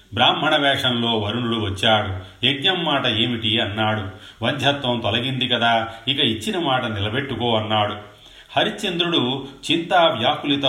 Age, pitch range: 30-49, 110-135 Hz